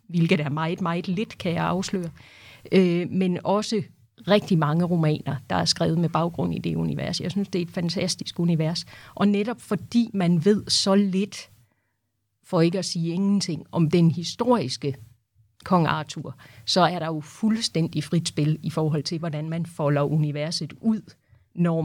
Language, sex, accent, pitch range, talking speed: Danish, female, native, 150-190 Hz, 170 wpm